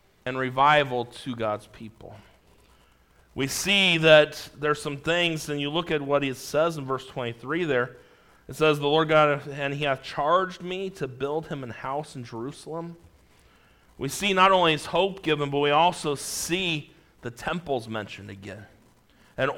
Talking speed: 170 wpm